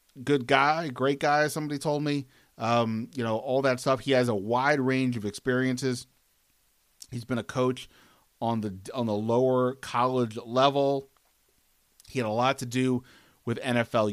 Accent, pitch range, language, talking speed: American, 115-130 Hz, English, 165 wpm